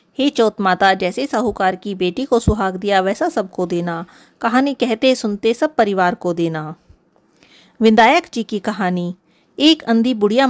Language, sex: Hindi, female